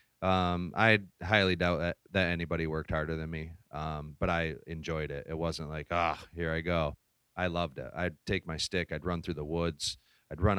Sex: male